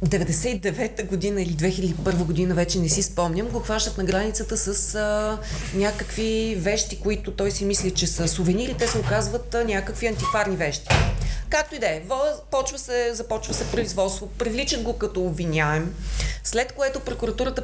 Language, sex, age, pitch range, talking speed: Bulgarian, female, 30-49, 180-230 Hz, 155 wpm